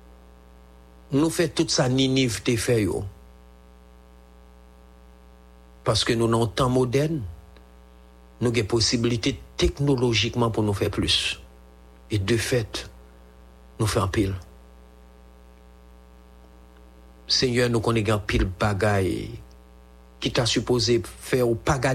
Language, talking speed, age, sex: English, 110 wpm, 50-69, male